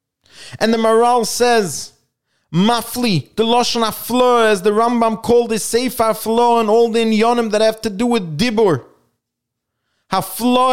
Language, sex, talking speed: English, male, 145 wpm